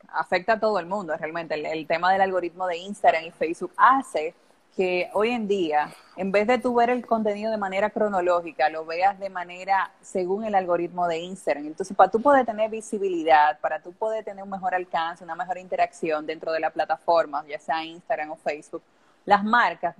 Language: Spanish